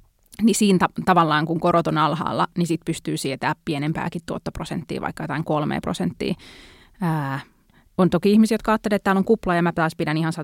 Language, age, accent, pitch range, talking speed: Finnish, 20-39, native, 155-195 Hz, 185 wpm